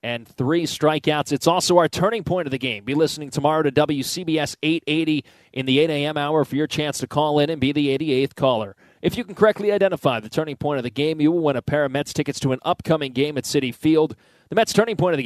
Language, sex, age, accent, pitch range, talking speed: English, male, 30-49, American, 140-165 Hz, 255 wpm